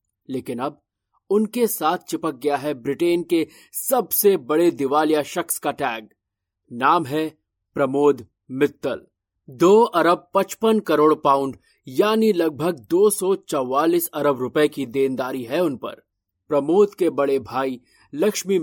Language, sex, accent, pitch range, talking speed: Hindi, male, native, 135-175 Hz, 125 wpm